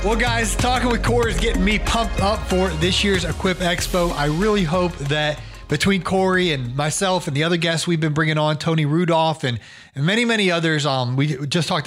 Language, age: English, 30-49